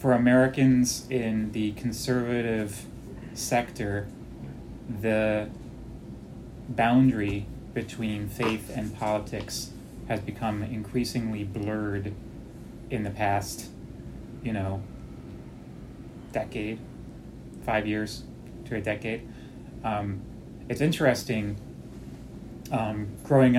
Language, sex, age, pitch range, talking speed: English, male, 30-49, 105-125 Hz, 80 wpm